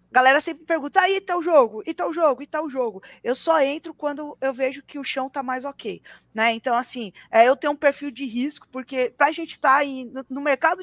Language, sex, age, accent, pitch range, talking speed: Portuguese, female, 20-39, Brazilian, 250-295 Hz, 255 wpm